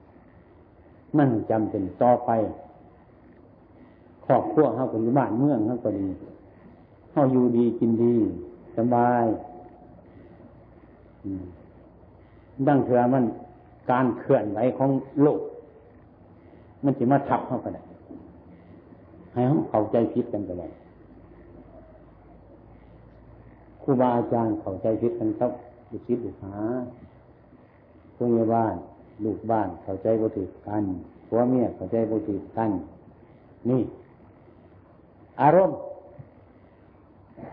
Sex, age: male, 60-79